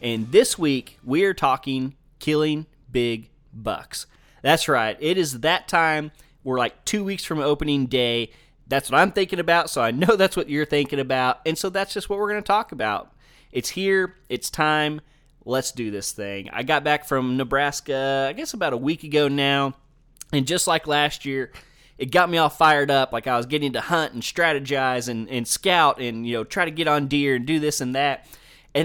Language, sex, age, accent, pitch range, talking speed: English, male, 20-39, American, 125-155 Hz, 210 wpm